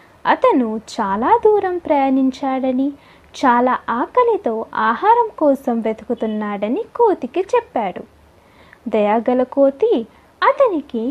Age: 20-39